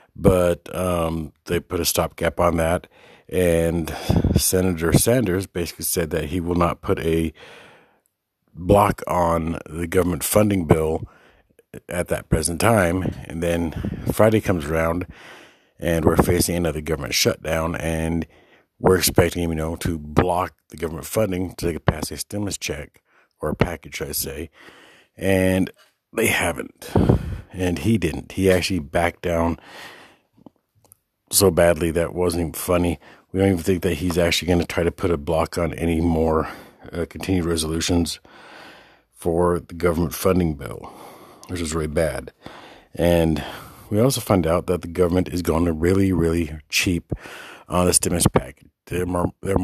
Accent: American